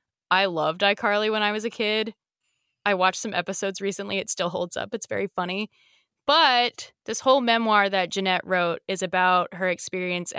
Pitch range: 170-205 Hz